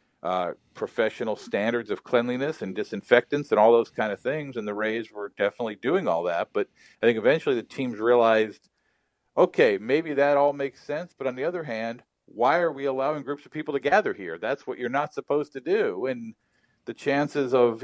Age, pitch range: 50-69, 110-145 Hz